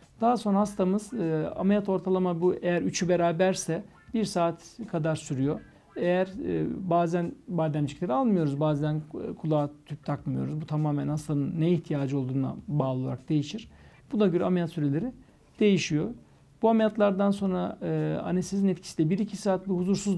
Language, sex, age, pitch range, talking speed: Turkish, male, 60-79, 150-195 Hz, 135 wpm